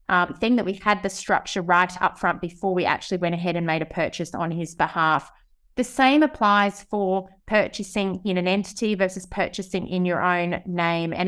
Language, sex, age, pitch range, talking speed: English, female, 30-49, 180-215 Hz, 195 wpm